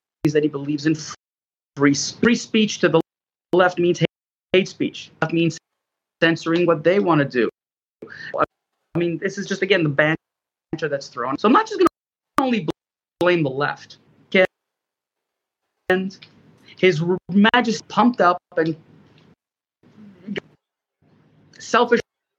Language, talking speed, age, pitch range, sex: English, 130 wpm, 30-49, 150-195 Hz, male